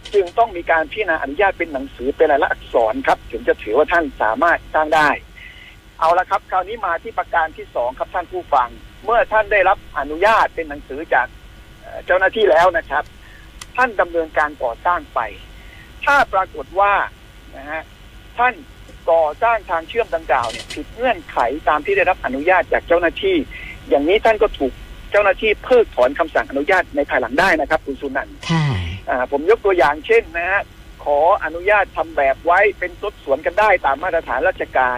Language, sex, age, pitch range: Thai, male, 60-79, 145-210 Hz